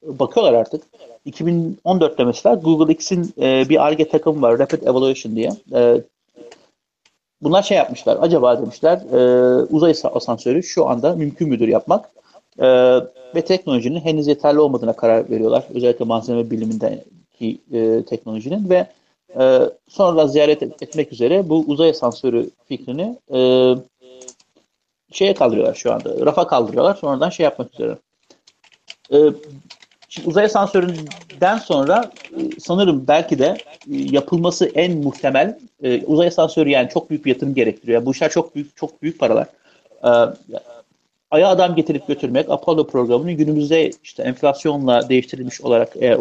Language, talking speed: Turkish, 120 wpm